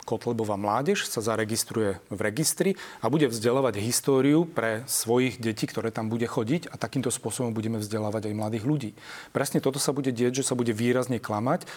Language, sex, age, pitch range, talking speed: Slovak, male, 40-59, 110-140 Hz, 180 wpm